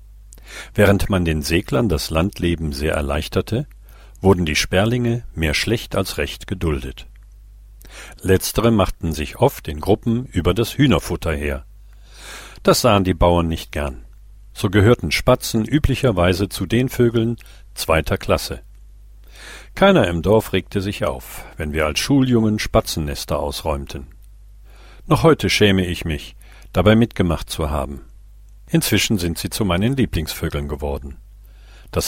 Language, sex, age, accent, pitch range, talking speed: German, male, 50-69, German, 85-110 Hz, 130 wpm